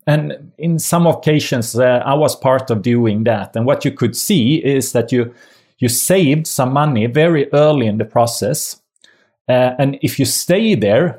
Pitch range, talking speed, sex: 110-150 Hz, 180 wpm, male